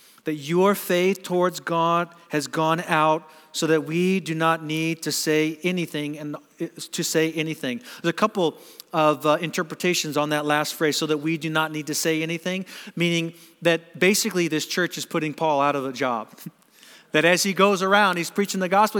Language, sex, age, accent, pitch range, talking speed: English, male, 40-59, American, 160-190 Hz, 195 wpm